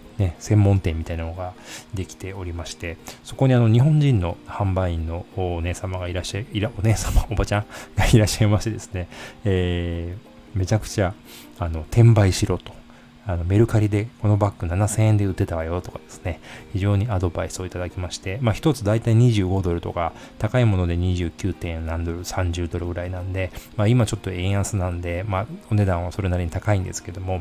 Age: 20-39